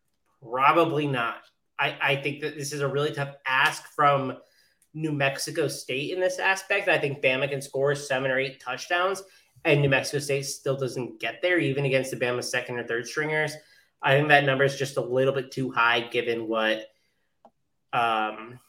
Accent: American